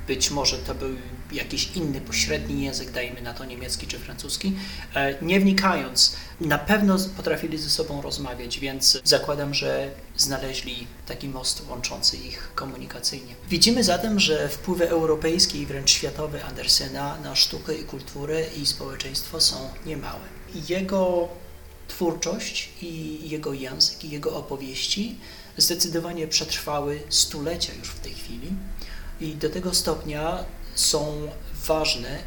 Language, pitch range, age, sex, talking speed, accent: Polish, 140-180 Hz, 30-49, male, 130 wpm, native